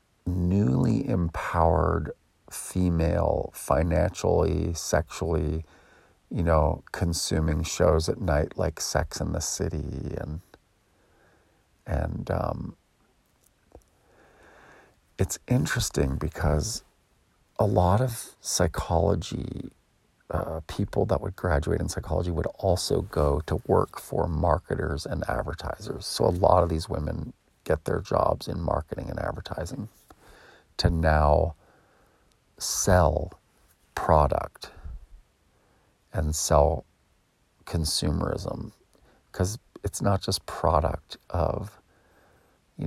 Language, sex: English, male